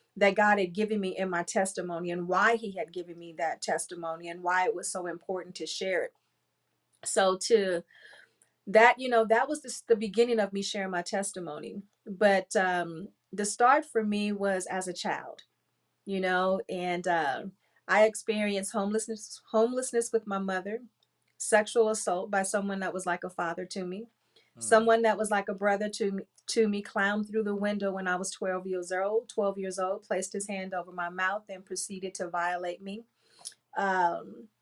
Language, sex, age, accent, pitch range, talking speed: English, female, 40-59, American, 185-220 Hz, 185 wpm